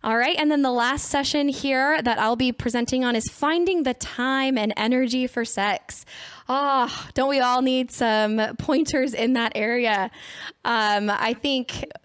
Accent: American